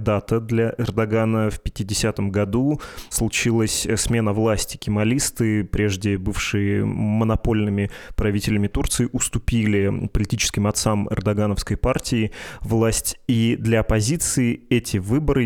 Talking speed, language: 100 wpm, Russian